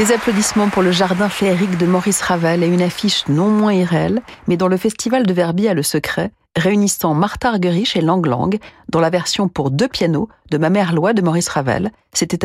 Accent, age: French, 40-59